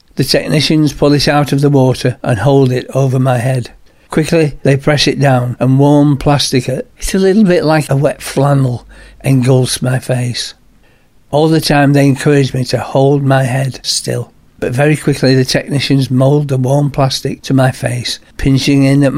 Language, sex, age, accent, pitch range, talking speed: English, male, 60-79, British, 130-145 Hz, 185 wpm